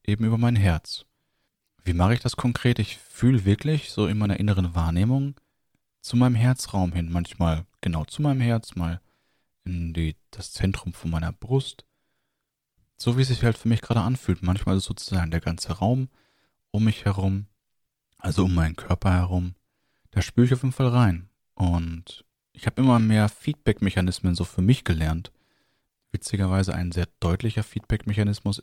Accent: German